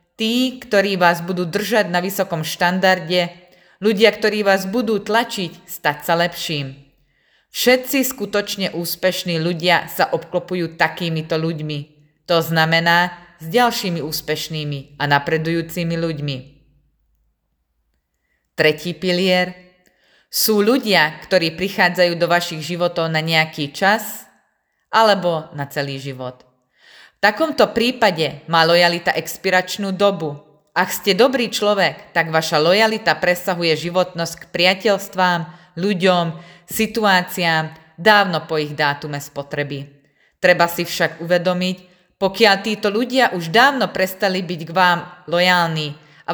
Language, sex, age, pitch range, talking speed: Slovak, female, 20-39, 155-195 Hz, 115 wpm